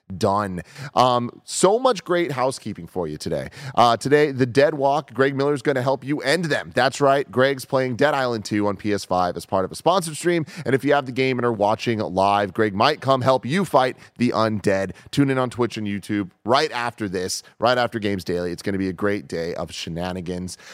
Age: 30-49